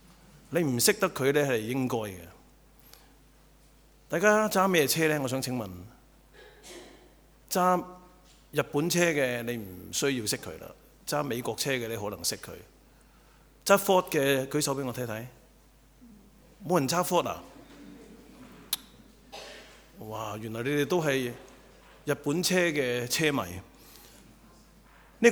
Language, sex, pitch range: English, male, 125-165 Hz